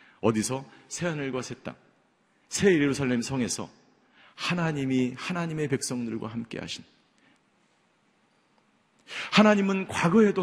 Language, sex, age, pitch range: Korean, male, 40-59, 110-165 Hz